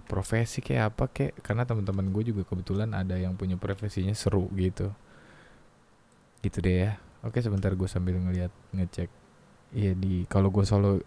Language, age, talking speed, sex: Indonesian, 20-39, 155 wpm, male